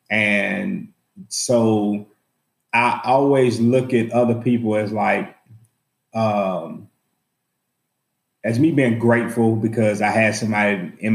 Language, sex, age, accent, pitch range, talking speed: English, male, 30-49, American, 105-120 Hz, 110 wpm